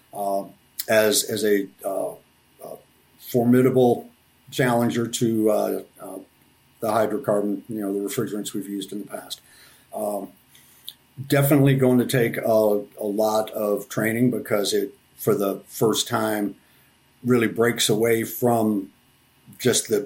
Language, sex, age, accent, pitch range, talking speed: English, male, 50-69, American, 105-120 Hz, 135 wpm